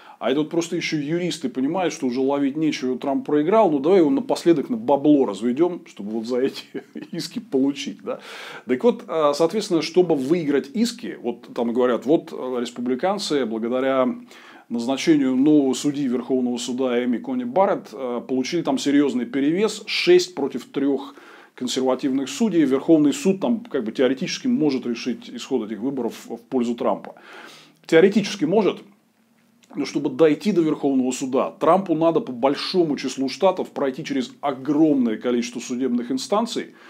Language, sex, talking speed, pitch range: Russian, male, 150 wpm, 130-195 Hz